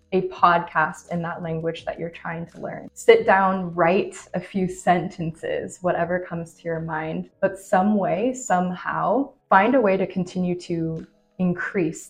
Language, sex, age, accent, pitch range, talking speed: English, female, 20-39, American, 165-185 Hz, 160 wpm